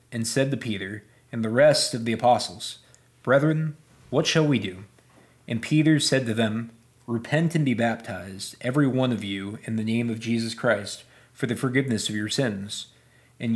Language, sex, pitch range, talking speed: English, male, 110-135 Hz, 180 wpm